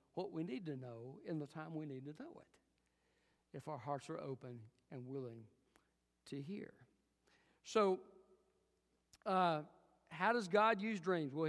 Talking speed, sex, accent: 155 wpm, male, American